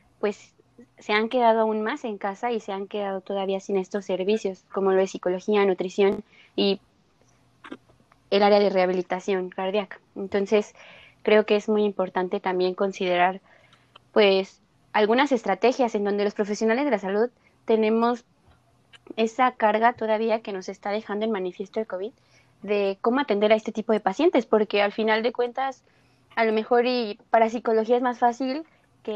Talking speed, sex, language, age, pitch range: 165 wpm, female, Spanish, 20-39, 195-230 Hz